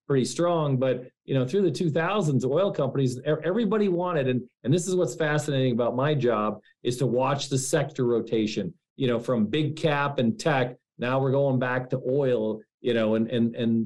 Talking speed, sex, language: 195 wpm, male, English